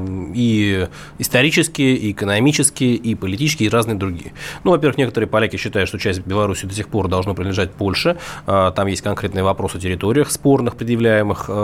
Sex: male